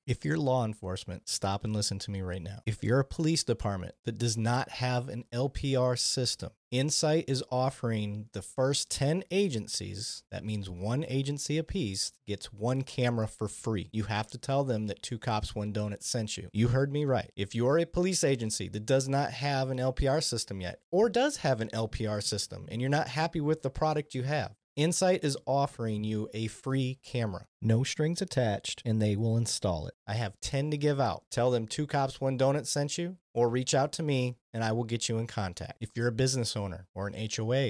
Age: 30-49